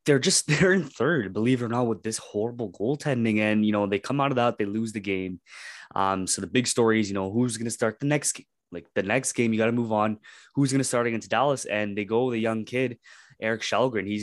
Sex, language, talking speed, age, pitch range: male, English, 275 wpm, 20-39, 100-125 Hz